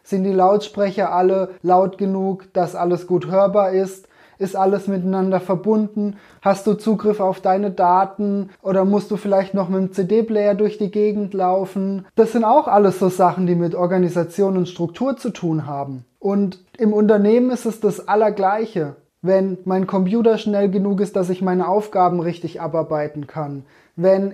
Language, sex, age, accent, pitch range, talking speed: German, male, 20-39, German, 180-210 Hz, 170 wpm